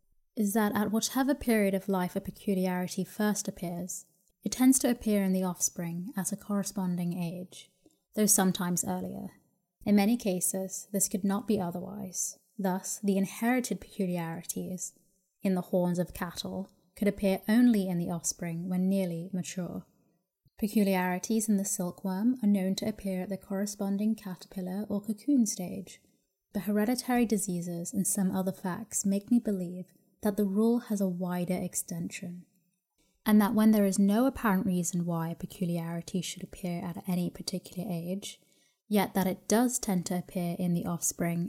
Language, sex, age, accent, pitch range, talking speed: English, female, 20-39, British, 180-205 Hz, 160 wpm